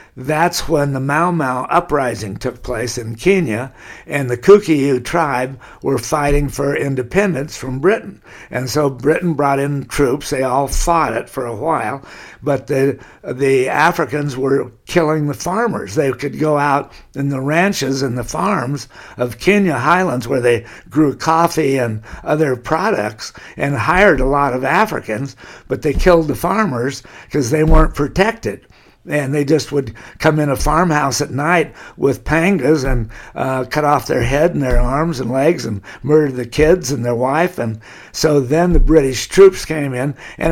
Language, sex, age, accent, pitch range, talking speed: English, male, 60-79, American, 130-160 Hz, 170 wpm